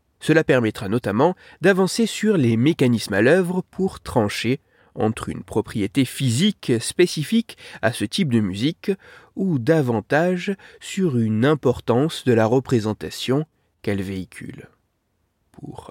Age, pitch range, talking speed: 30-49, 115-185 Hz, 120 wpm